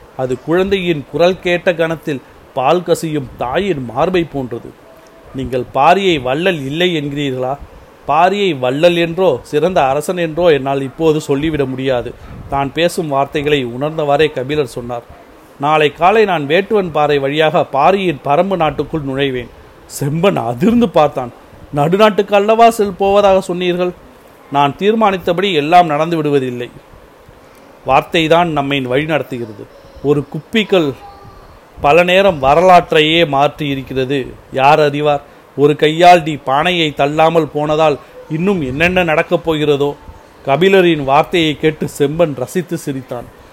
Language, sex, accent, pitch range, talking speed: Tamil, male, native, 140-175 Hz, 110 wpm